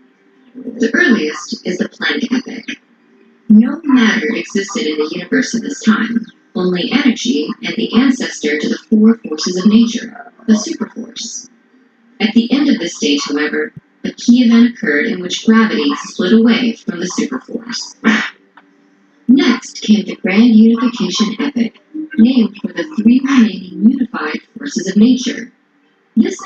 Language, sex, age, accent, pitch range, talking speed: Tamil, female, 40-59, American, 220-250 Hz, 145 wpm